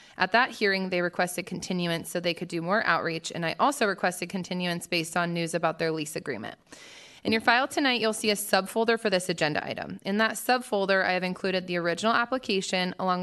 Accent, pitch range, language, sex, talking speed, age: American, 175-215 Hz, English, female, 210 wpm, 20-39